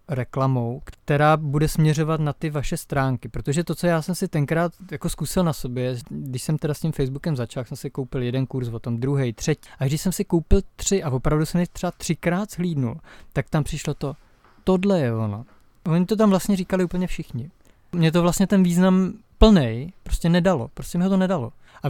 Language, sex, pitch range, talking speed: Czech, male, 140-175 Hz, 205 wpm